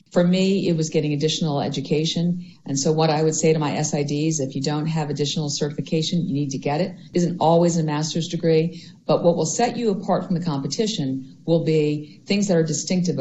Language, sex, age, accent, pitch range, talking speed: English, female, 50-69, American, 150-180 Hz, 215 wpm